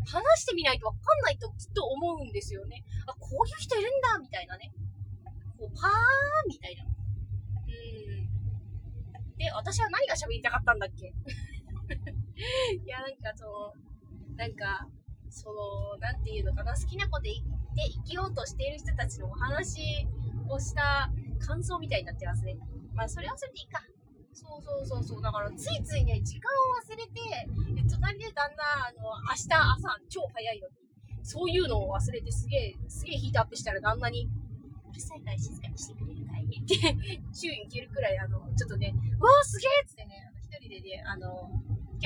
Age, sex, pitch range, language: 20-39, female, 100-115 Hz, Japanese